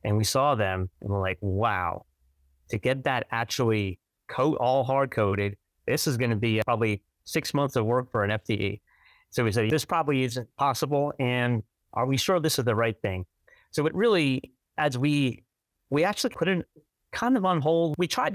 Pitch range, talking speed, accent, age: 100-135 Hz, 195 wpm, American, 30-49